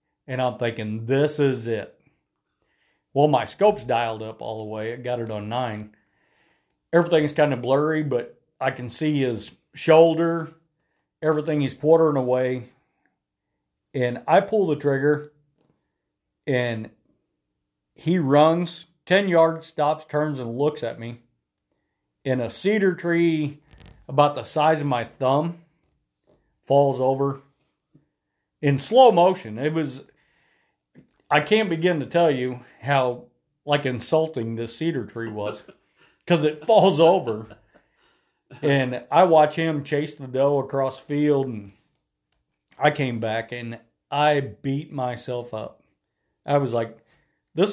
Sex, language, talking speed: male, English, 130 wpm